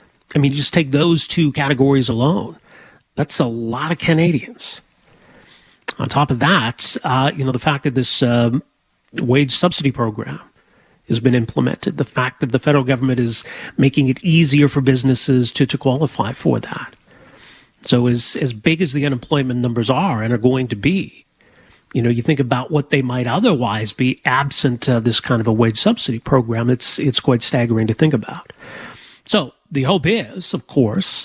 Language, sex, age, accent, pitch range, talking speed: English, male, 40-59, American, 125-145 Hz, 180 wpm